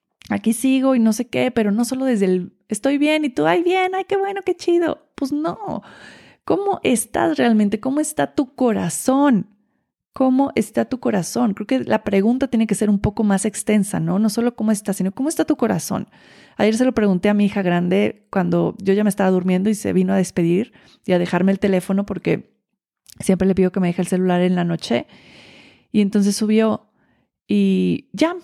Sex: female